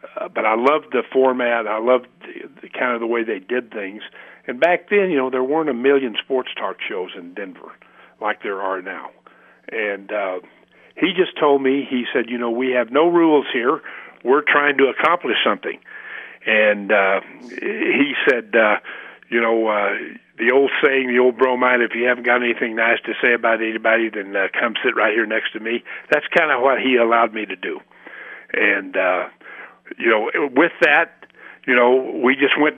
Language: English